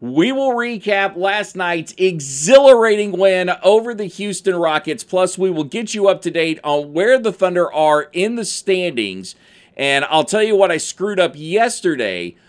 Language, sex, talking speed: English, male, 175 wpm